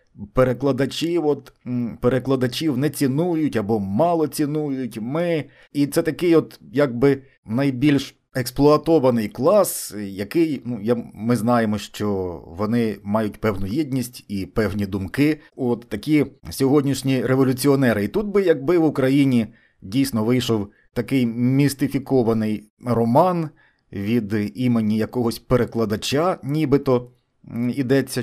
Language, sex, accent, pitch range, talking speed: Ukrainian, male, native, 115-145 Hz, 110 wpm